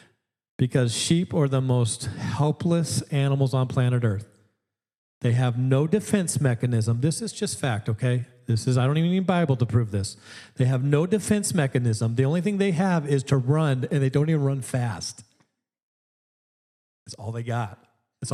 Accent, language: American, English